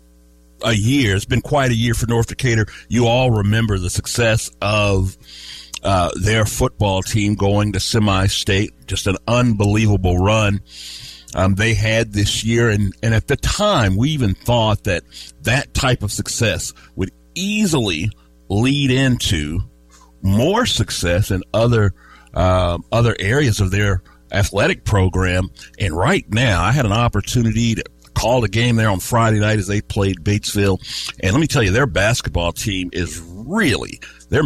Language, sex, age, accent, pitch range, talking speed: English, male, 50-69, American, 95-120 Hz, 155 wpm